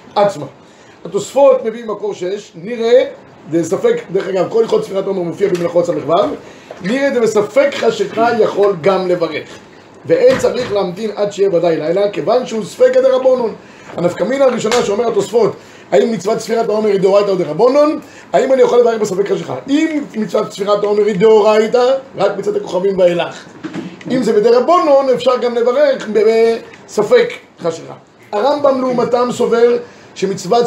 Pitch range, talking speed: 200-265 Hz, 135 wpm